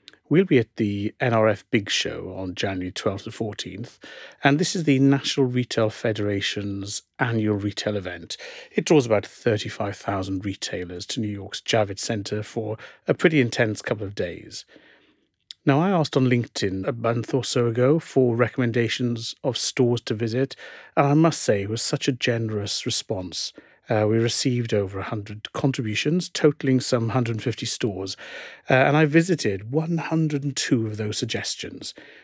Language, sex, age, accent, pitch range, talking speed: English, male, 40-59, British, 105-140 Hz, 155 wpm